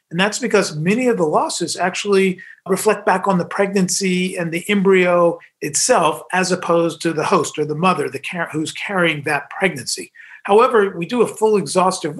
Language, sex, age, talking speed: English, male, 40-59, 170 wpm